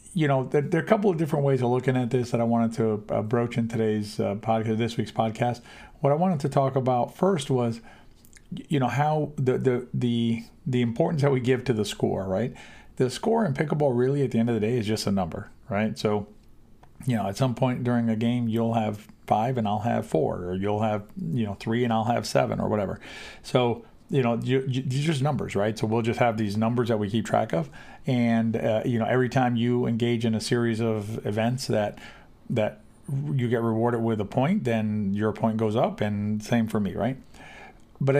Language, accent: English, American